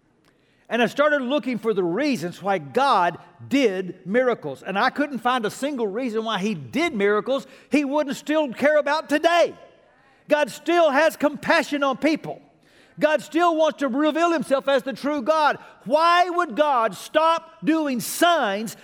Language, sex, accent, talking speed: English, male, American, 160 wpm